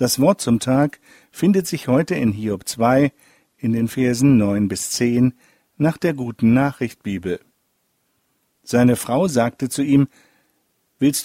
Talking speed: 135 wpm